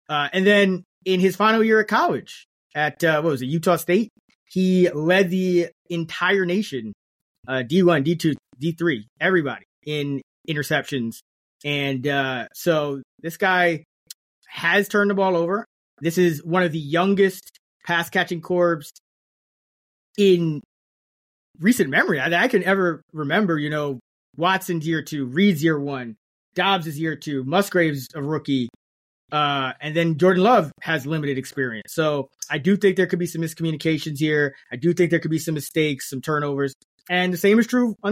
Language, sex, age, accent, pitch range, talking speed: English, male, 30-49, American, 150-185 Hz, 160 wpm